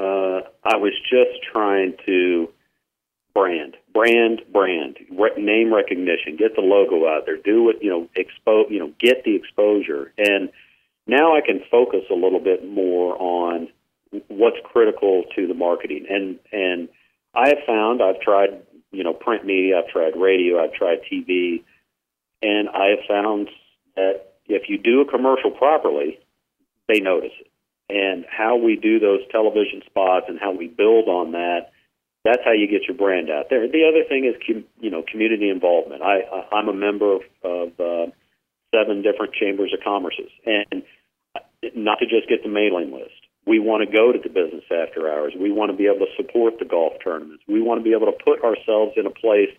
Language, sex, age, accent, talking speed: English, male, 50-69, American, 185 wpm